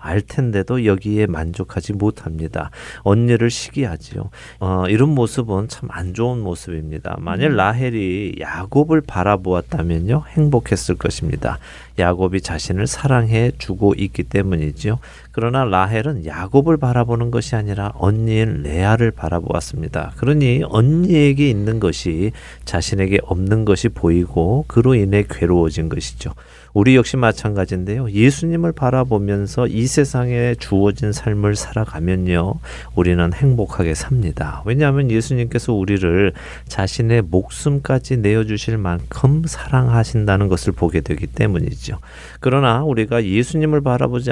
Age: 40-59